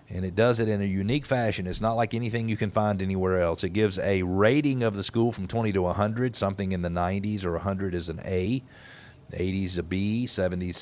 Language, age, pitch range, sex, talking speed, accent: English, 40-59, 95-120 Hz, male, 230 wpm, American